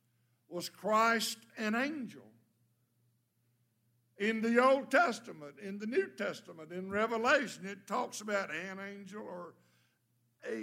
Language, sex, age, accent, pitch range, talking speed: English, male, 60-79, American, 120-190 Hz, 120 wpm